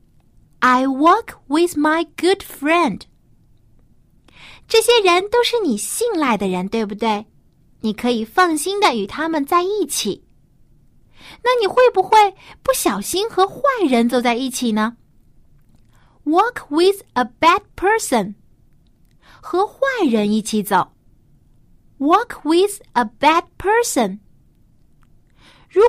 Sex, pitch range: female, 225-370 Hz